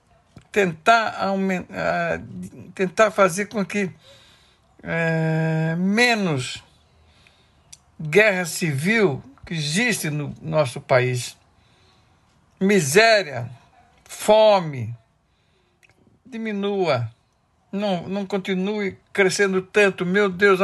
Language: Portuguese